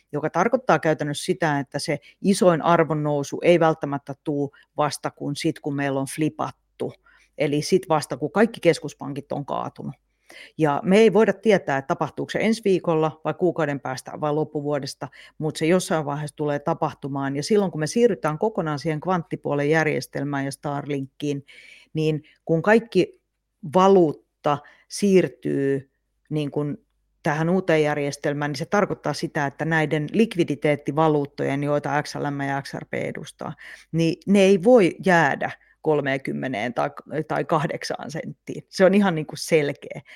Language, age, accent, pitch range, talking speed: Finnish, 40-59, native, 145-175 Hz, 140 wpm